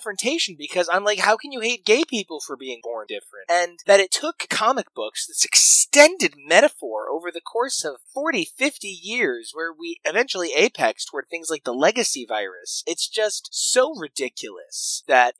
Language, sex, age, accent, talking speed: English, male, 30-49, American, 175 wpm